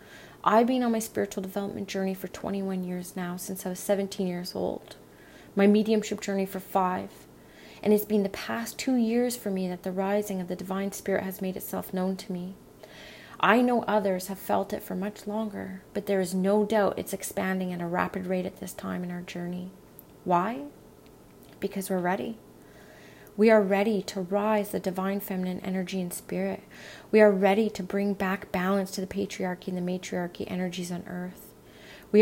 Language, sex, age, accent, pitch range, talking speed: English, female, 30-49, American, 185-210 Hz, 190 wpm